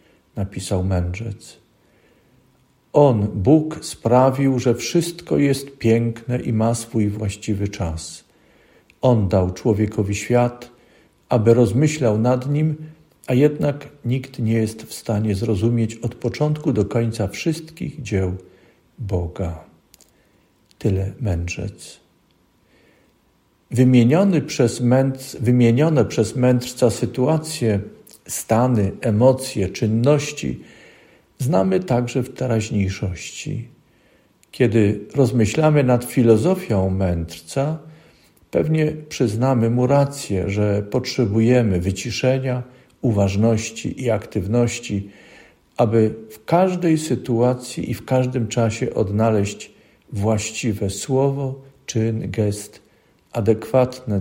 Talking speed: 90 wpm